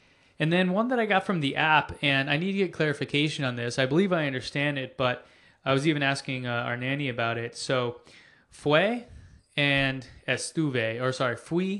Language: English